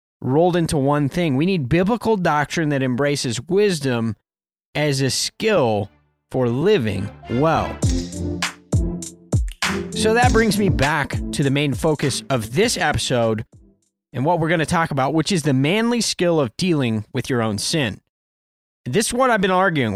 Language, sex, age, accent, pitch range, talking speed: English, male, 30-49, American, 125-180 Hz, 160 wpm